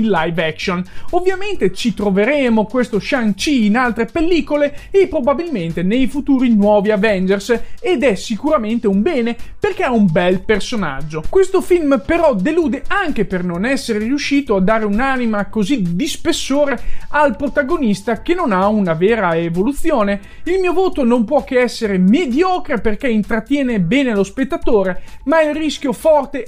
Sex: male